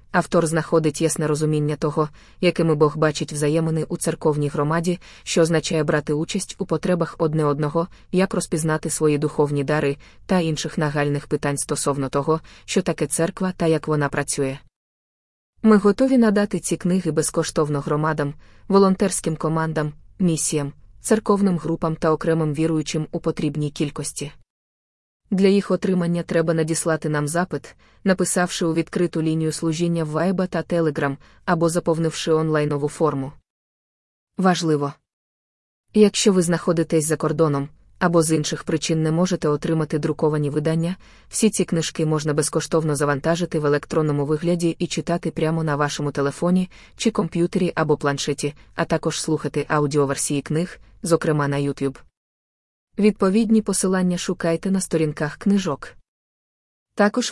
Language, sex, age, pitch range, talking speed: Ukrainian, female, 20-39, 150-175 Hz, 130 wpm